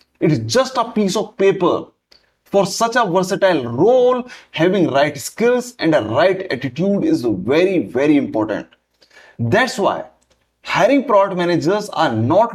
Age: 30-49